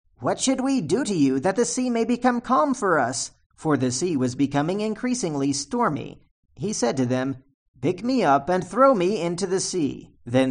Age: 40-59